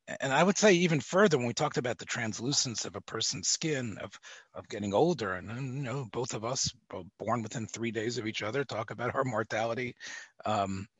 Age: 40-59